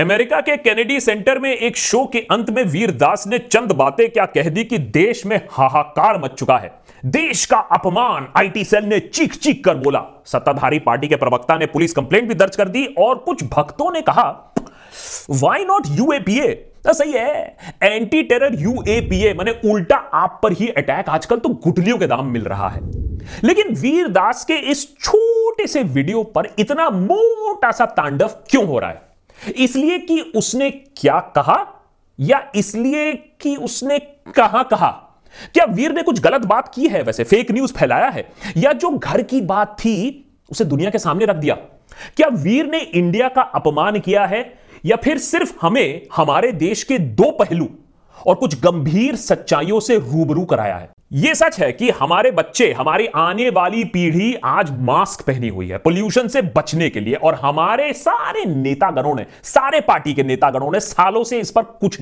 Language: Hindi